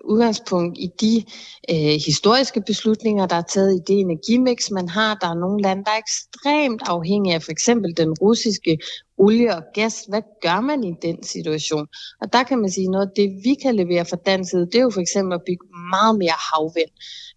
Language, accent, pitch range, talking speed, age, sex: Danish, native, 175-215 Hz, 200 wpm, 30-49, female